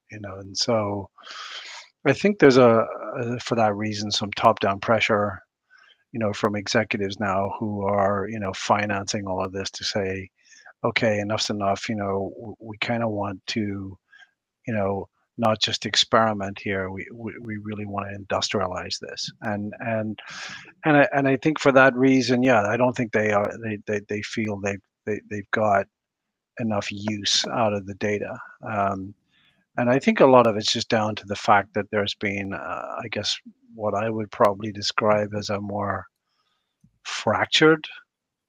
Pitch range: 100-120 Hz